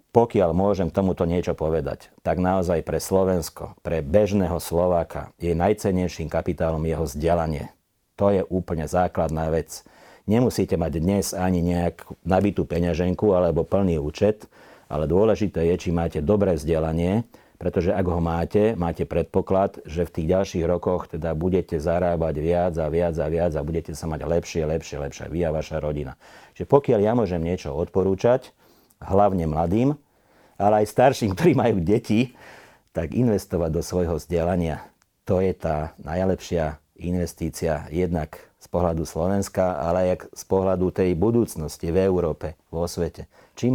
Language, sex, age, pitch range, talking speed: Slovak, male, 50-69, 80-95 Hz, 150 wpm